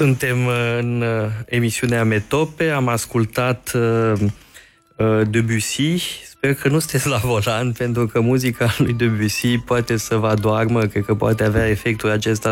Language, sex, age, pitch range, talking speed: Romanian, male, 20-39, 110-135 Hz, 150 wpm